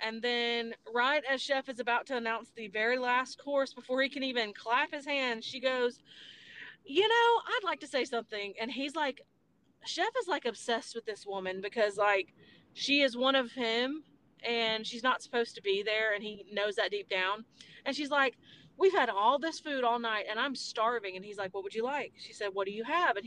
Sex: female